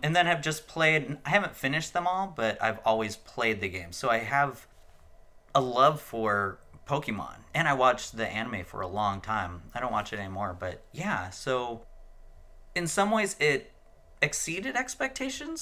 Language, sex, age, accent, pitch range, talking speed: English, male, 30-49, American, 95-140 Hz, 175 wpm